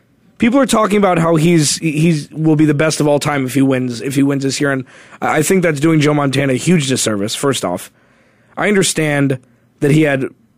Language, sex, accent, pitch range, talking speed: English, male, American, 130-155 Hz, 220 wpm